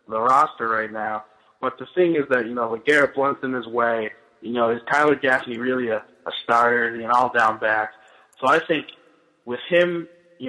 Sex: male